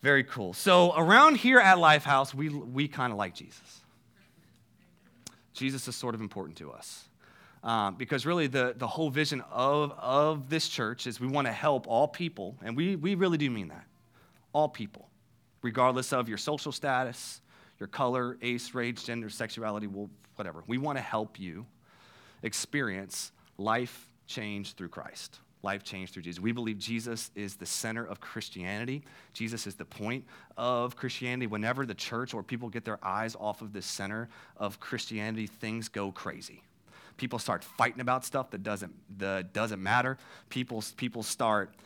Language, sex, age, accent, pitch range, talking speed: English, male, 30-49, American, 110-135 Hz, 170 wpm